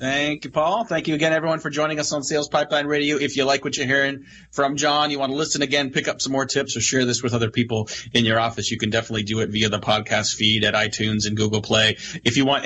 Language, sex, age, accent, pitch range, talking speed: English, male, 30-49, American, 115-145 Hz, 275 wpm